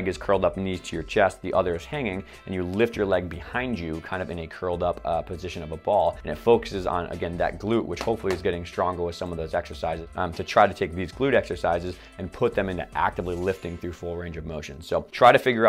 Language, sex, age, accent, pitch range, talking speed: English, male, 20-39, American, 85-100 Hz, 265 wpm